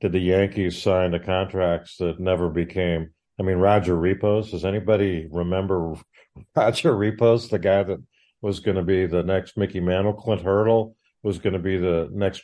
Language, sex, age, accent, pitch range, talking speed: English, male, 50-69, American, 90-115 Hz, 185 wpm